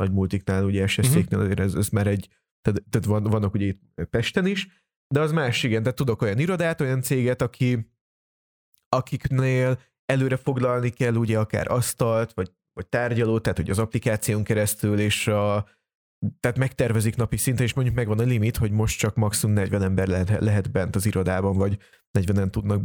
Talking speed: 175 wpm